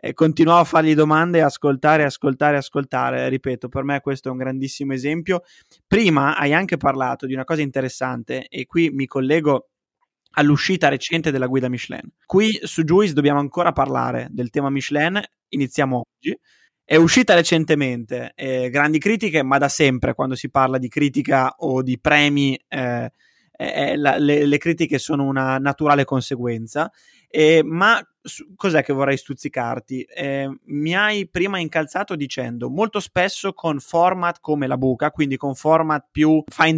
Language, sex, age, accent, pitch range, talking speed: Italian, male, 20-39, native, 135-160 Hz, 155 wpm